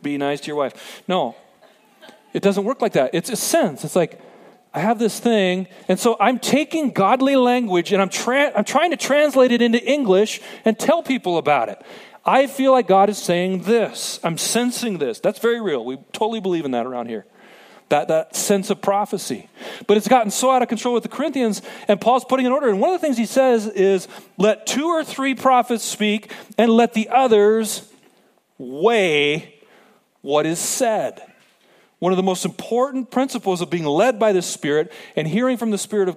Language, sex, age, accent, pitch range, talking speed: English, male, 40-59, American, 175-235 Hz, 200 wpm